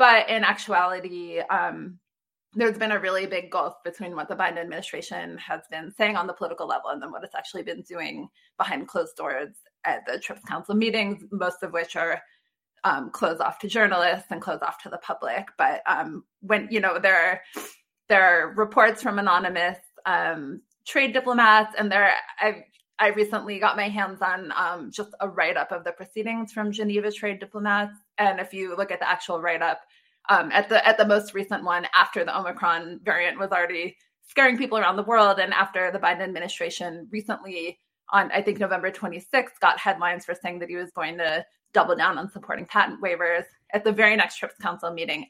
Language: English